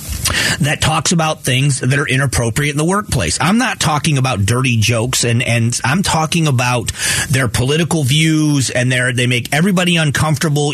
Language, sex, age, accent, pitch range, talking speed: English, male, 40-59, American, 125-160 Hz, 160 wpm